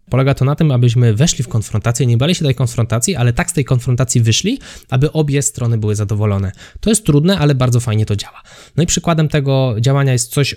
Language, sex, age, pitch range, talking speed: Polish, male, 20-39, 110-145 Hz, 220 wpm